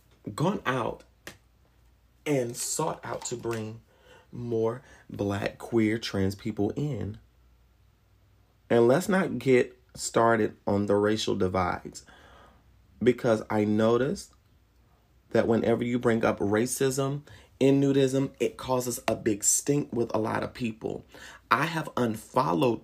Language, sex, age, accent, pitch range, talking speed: English, male, 30-49, American, 110-125 Hz, 120 wpm